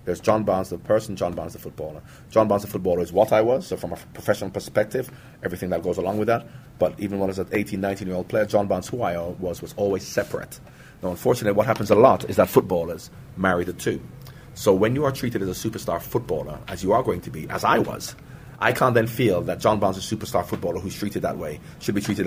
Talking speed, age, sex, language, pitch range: 245 wpm, 30-49, male, English, 90-115 Hz